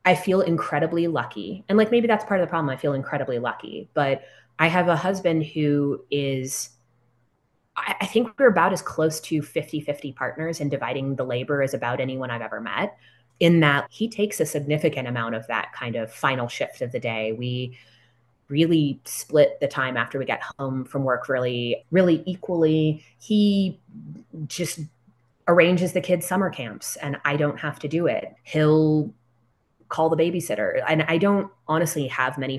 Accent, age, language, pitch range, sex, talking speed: American, 20-39, English, 125-175 Hz, female, 180 wpm